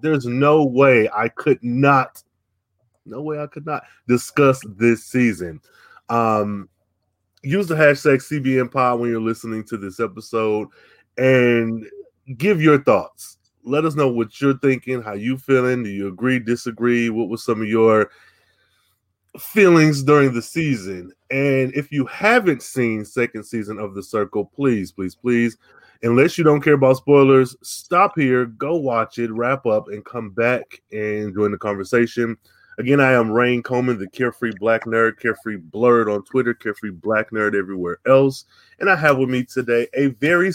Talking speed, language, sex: 165 wpm, English, male